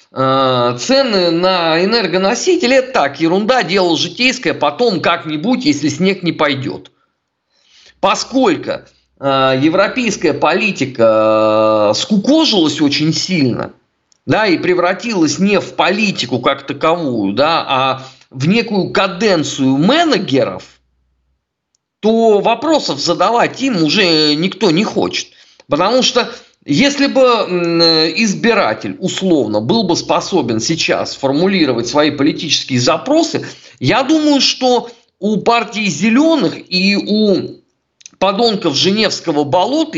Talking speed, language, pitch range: 100 wpm, Russian, 150-235 Hz